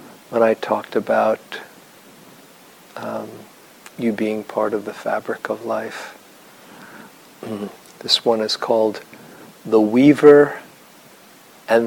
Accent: American